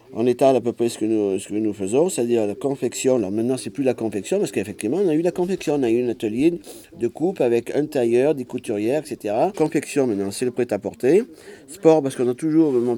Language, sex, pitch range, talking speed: French, male, 105-135 Hz, 245 wpm